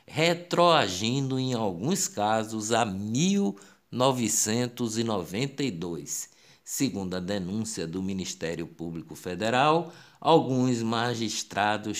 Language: Portuguese